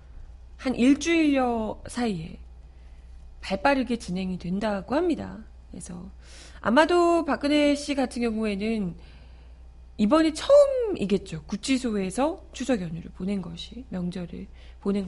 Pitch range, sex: 175-265 Hz, female